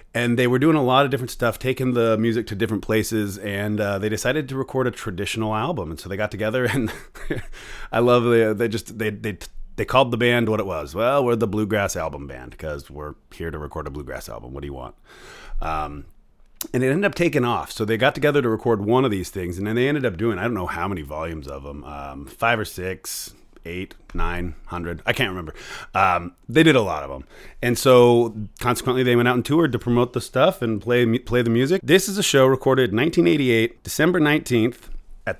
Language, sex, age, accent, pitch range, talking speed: English, male, 30-49, American, 105-125 Hz, 230 wpm